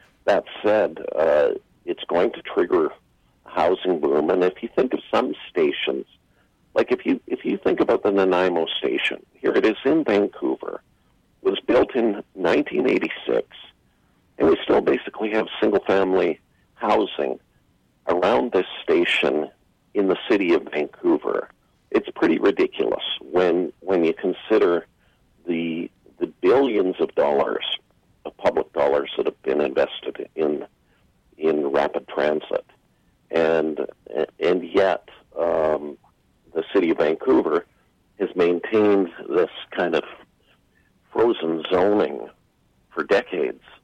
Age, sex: 50-69, male